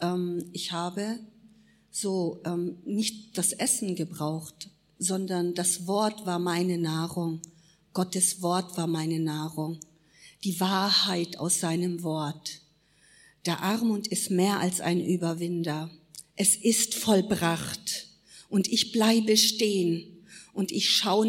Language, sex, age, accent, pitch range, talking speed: German, female, 50-69, German, 180-220 Hz, 115 wpm